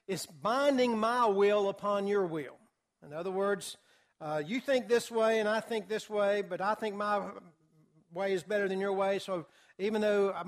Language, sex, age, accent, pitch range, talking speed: English, male, 60-79, American, 185-235 Hz, 195 wpm